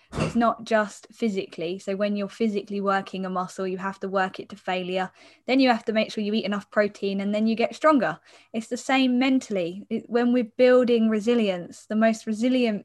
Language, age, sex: English, 10-29, female